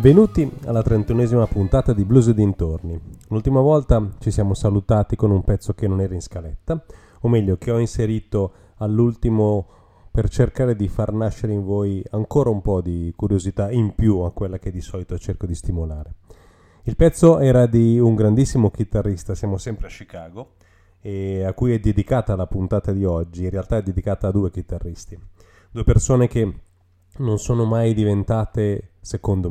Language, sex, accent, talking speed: Italian, male, native, 170 wpm